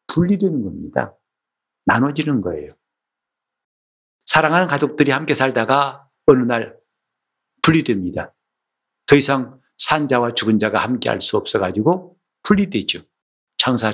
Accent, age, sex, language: native, 50-69, male, Korean